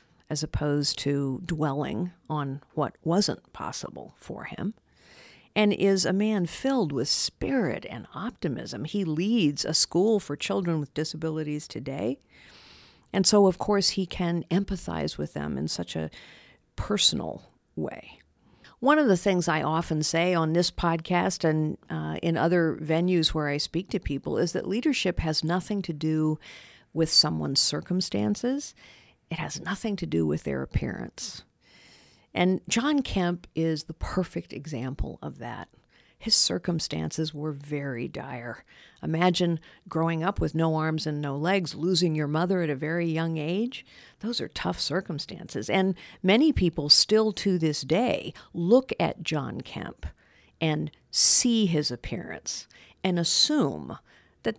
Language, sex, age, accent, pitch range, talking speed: English, female, 50-69, American, 150-190 Hz, 145 wpm